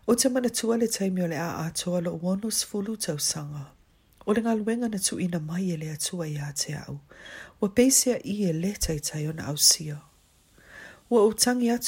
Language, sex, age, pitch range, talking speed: English, female, 40-59, 155-215 Hz, 155 wpm